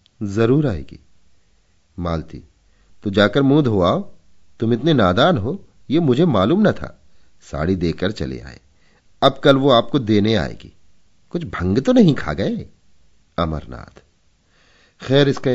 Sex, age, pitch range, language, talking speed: male, 40-59, 85-125 Hz, Hindi, 135 wpm